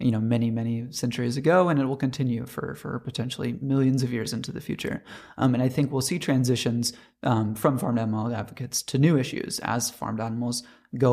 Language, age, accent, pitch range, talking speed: English, 30-49, American, 120-135 Hz, 205 wpm